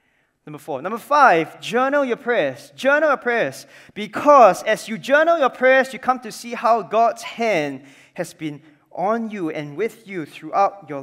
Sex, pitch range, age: male, 155-220 Hz, 20-39